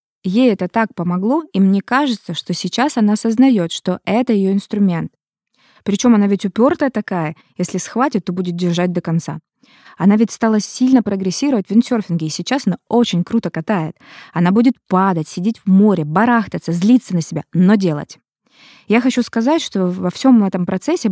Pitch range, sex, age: 180-240 Hz, female, 20-39